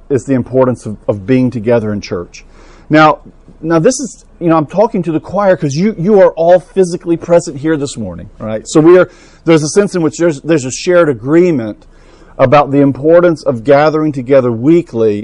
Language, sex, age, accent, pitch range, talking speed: English, male, 50-69, American, 130-170 Hz, 200 wpm